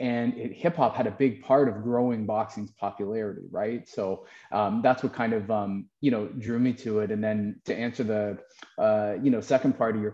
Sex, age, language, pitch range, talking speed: male, 20-39, English, 105-120 Hz, 220 wpm